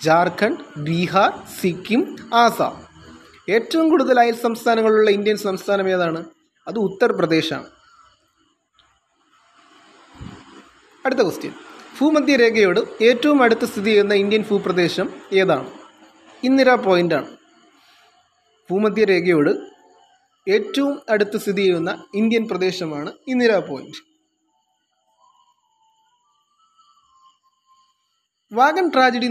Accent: native